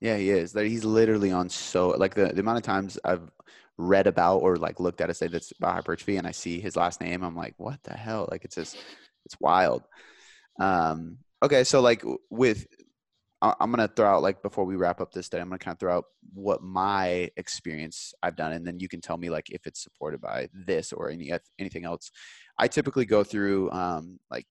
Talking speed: 225 wpm